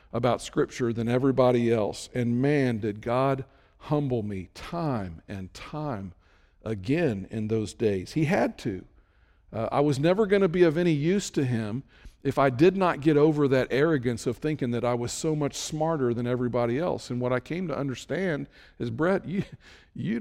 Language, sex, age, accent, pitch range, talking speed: English, male, 50-69, American, 120-160 Hz, 185 wpm